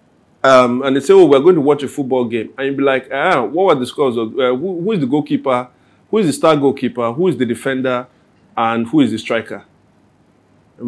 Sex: male